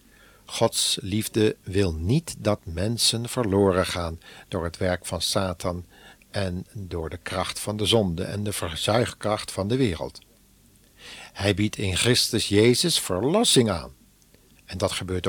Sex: male